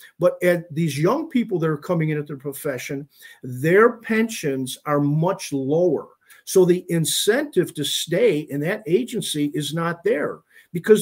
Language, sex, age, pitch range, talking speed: English, male, 50-69, 150-205 Hz, 160 wpm